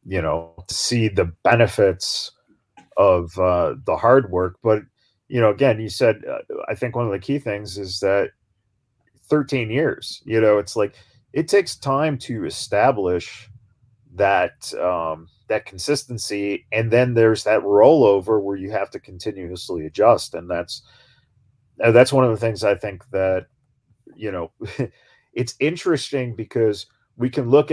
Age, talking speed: 40-59, 155 wpm